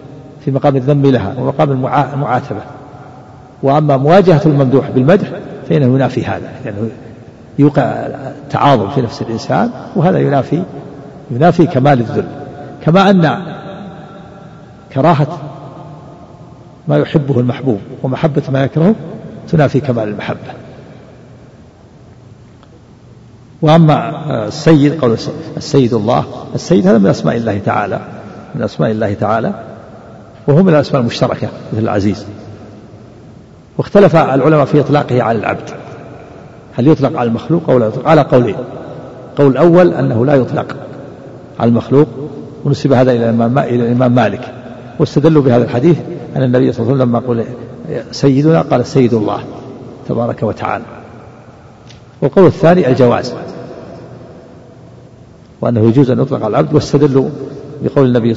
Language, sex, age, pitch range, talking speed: Arabic, male, 50-69, 120-150 Hz, 115 wpm